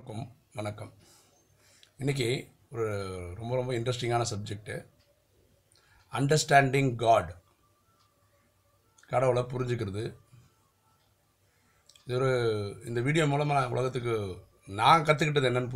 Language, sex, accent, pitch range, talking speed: Tamil, male, native, 100-125 Hz, 70 wpm